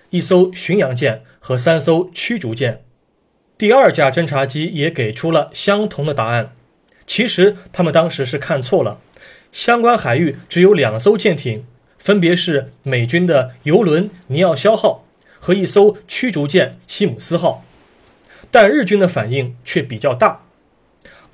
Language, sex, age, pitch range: Chinese, male, 30-49, 135-200 Hz